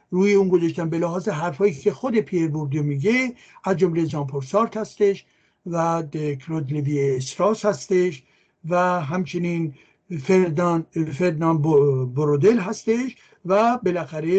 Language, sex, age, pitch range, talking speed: Persian, male, 60-79, 150-195 Hz, 110 wpm